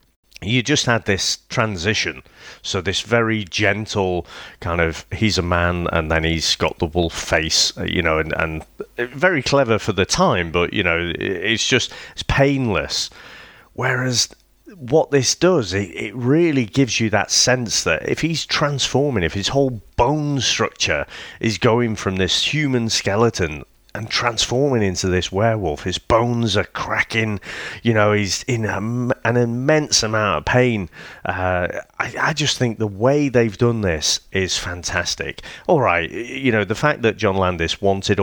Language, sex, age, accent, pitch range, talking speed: English, male, 30-49, British, 90-120 Hz, 165 wpm